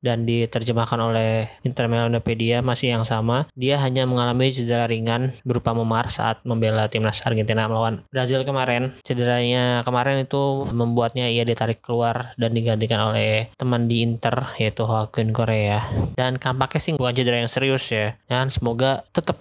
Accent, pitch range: Indonesian, 110-125 Hz